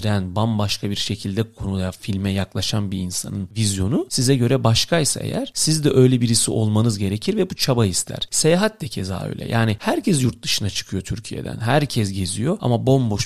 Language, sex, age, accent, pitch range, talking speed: Turkish, male, 40-59, native, 105-130 Hz, 170 wpm